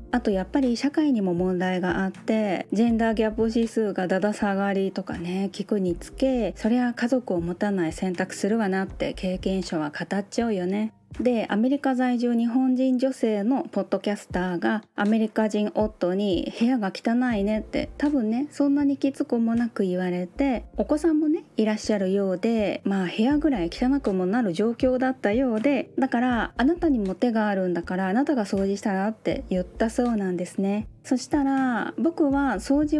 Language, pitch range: Japanese, 195-265 Hz